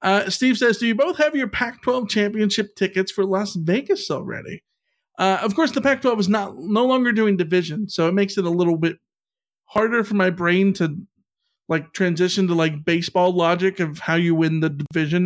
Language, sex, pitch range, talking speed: English, male, 165-210 Hz, 195 wpm